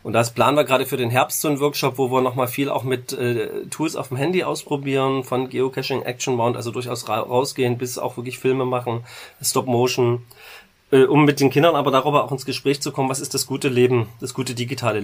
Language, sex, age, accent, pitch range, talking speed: German, male, 30-49, German, 120-140 Hz, 230 wpm